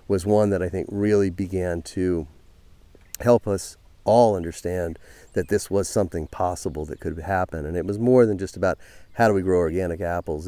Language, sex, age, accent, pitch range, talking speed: English, male, 40-59, American, 85-105 Hz, 190 wpm